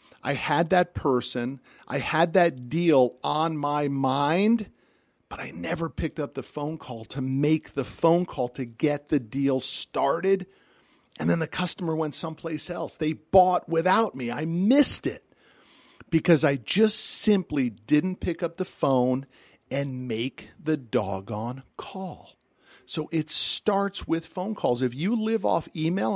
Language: English